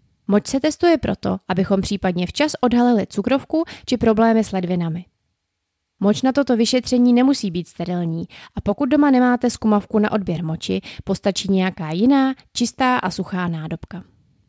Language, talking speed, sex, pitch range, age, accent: Czech, 145 wpm, female, 185-240 Hz, 20-39, native